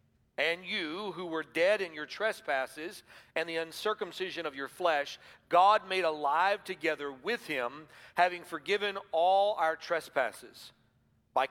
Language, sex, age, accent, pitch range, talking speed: English, male, 50-69, American, 140-190 Hz, 135 wpm